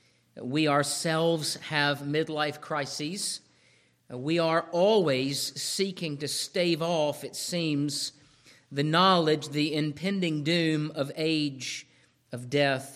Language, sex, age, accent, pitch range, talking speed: English, male, 50-69, American, 135-175 Hz, 105 wpm